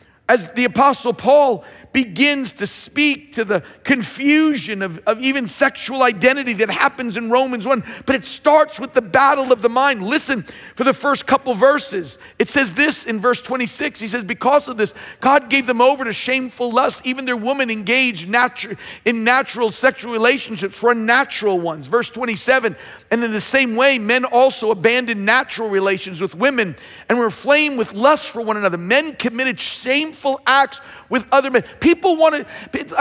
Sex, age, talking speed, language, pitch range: male, 50-69, 175 wpm, English, 225-280 Hz